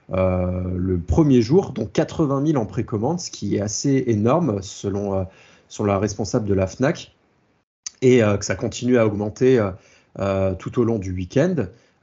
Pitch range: 100-125 Hz